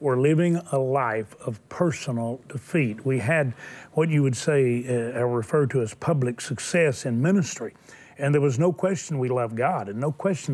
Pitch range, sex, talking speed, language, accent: 130-170 Hz, male, 180 wpm, English, American